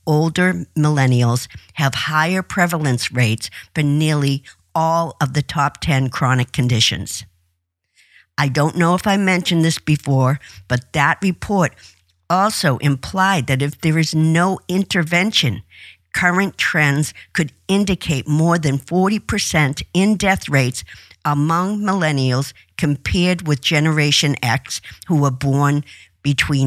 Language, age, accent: English, 50-69, American